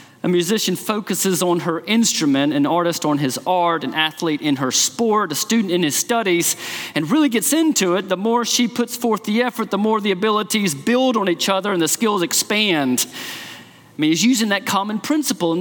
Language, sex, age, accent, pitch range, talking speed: English, male, 40-59, American, 165-230 Hz, 205 wpm